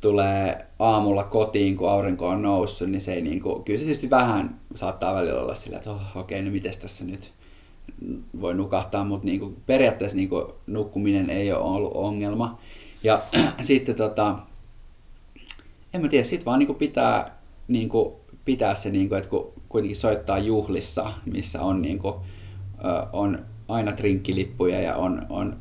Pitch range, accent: 95-105 Hz, native